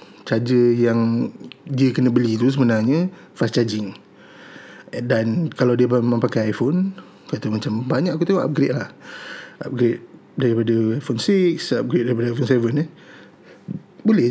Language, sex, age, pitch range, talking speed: Malay, male, 20-39, 115-150 Hz, 135 wpm